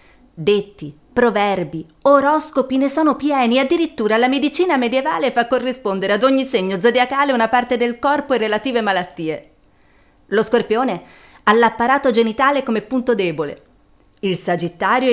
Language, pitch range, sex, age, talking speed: Italian, 205-265 Hz, female, 30-49, 130 wpm